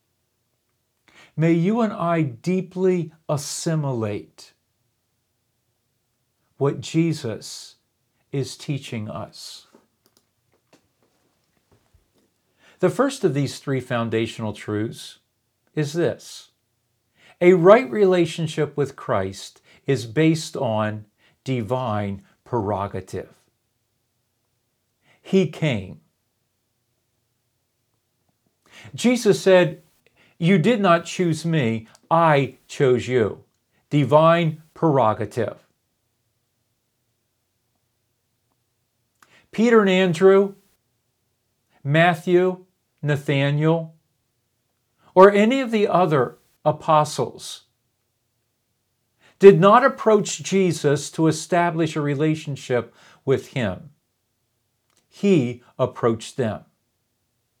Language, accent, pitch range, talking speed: English, American, 120-165 Hz, 70 wpm